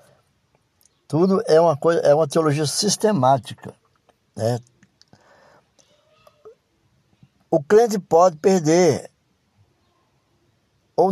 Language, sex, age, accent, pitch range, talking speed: Portuguese, male, 60-79, Brazilian, 115-160 Hz, 75 wpm